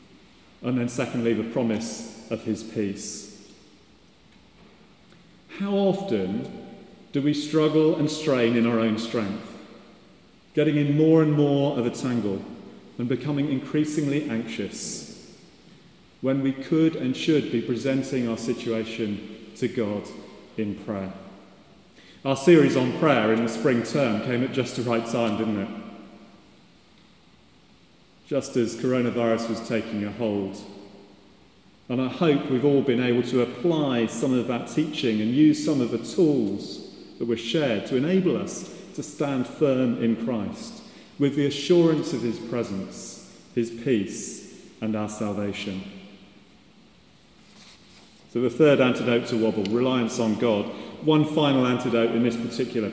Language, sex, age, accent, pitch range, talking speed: English, male, 40-59, British, 110-150 Hz, 140 wpm